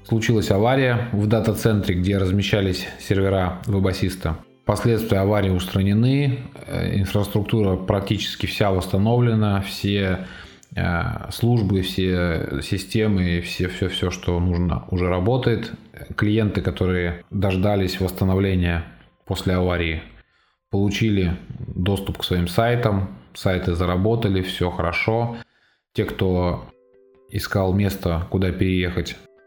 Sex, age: male, 20-39